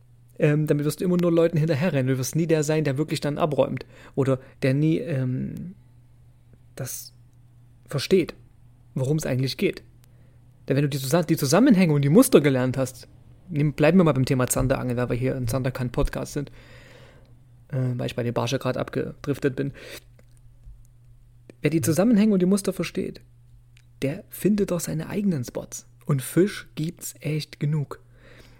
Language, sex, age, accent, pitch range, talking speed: German, male, 30-49, German, 120-165 Hz, 170 wpm